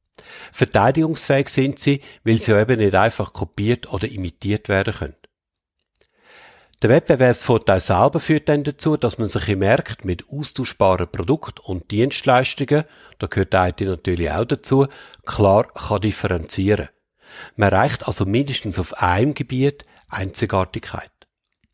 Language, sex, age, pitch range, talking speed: German, male, 50-69, 100-135 Hz, 130 wpm